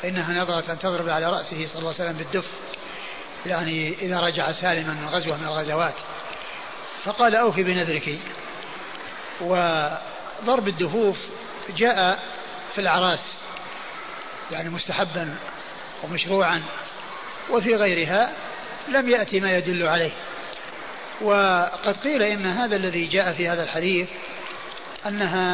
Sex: male